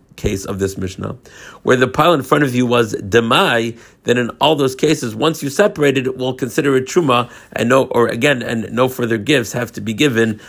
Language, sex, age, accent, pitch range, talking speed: English, male, 50-69, American, 110-135 Hz, 210 wpm